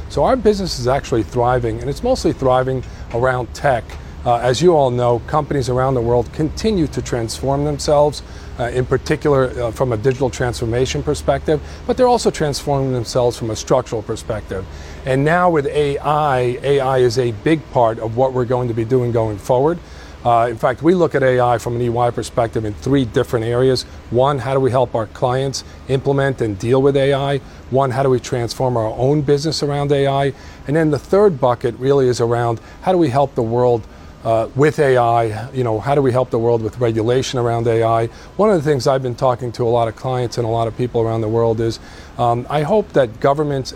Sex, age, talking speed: male, 40-59, 210 wpm